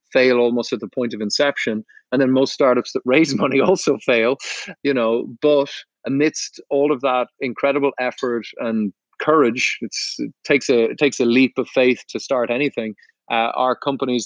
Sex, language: male, English